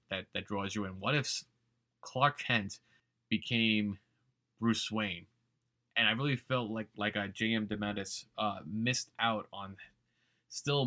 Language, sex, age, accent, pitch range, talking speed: English, male, 20-39, American, 105-125 Hz, 135 wpm